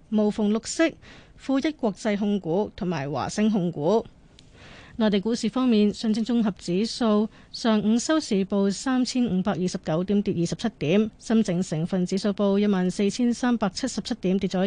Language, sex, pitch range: Chinese, female, 190-235 Hz